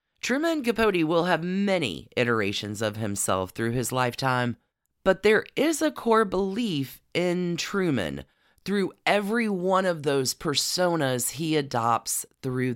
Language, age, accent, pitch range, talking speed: English, 30-49, American, 115-160 Hz, 130 wpm